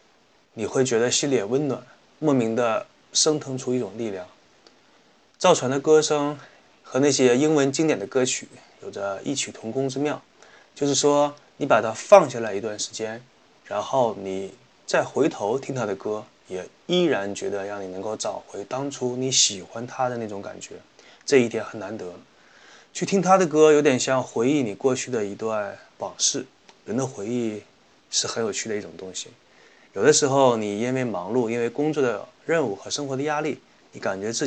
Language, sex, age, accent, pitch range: Chinese, male, 20-39, native, 110-145 Hz